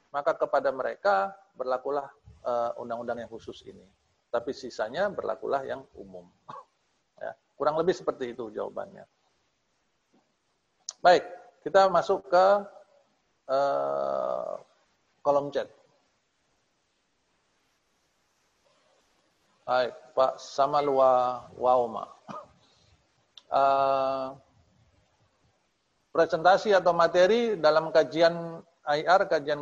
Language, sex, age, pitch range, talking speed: Indonesian, male, 40-59, 120-170 Hz, 70 wpm